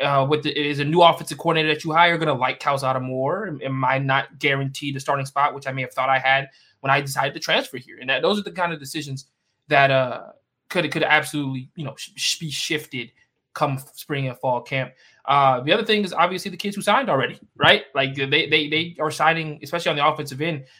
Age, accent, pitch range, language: 20-39, American, 135-155 Hz, English